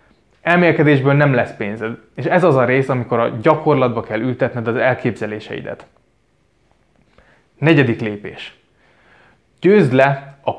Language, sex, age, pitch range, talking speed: Hungarian, male, 20-39, 110-150 Hz, 120 wpm